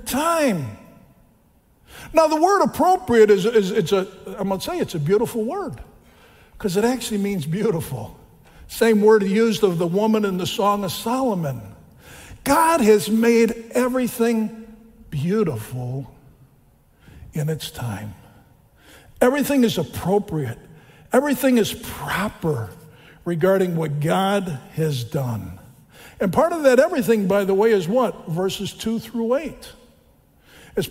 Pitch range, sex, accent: 175-240 Hz, male, American